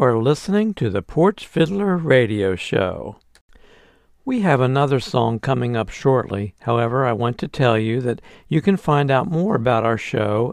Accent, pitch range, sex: American, 115-150 Hz, male